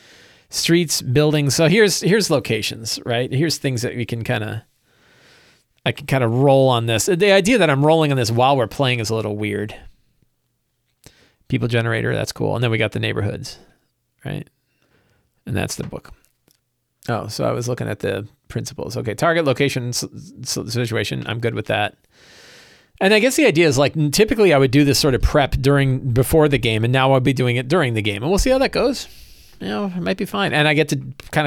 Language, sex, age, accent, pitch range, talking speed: English, male, 40-59, American, 115-150 Hz, 210 wpm